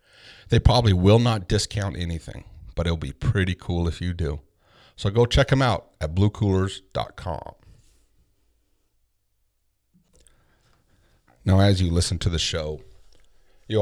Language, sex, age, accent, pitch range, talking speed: English, male, 40-59, American, 85-110 Hz, 125 wpm